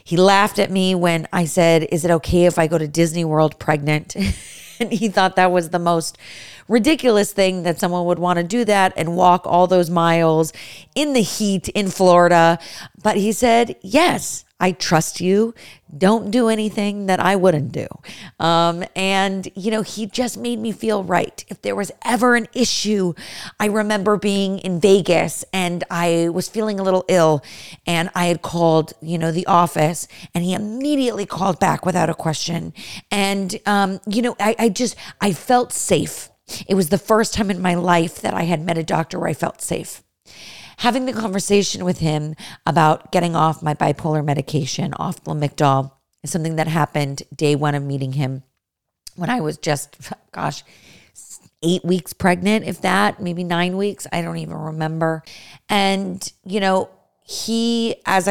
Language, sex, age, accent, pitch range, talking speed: English, female, 40-59, American, 165-205 Hz, 180 wpm